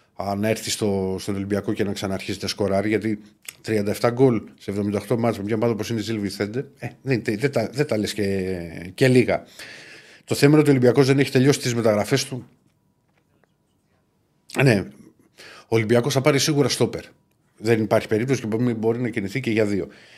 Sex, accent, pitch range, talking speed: male, native, 110-135 Hz, 170 wpm